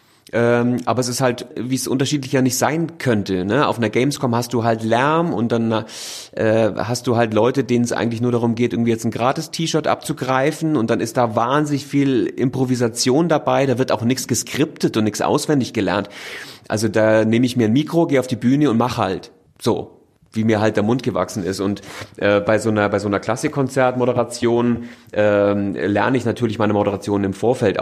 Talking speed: 205 wpm